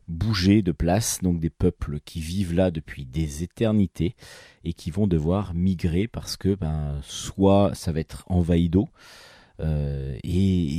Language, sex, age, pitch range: French, male, 30-49, 85-110 Hz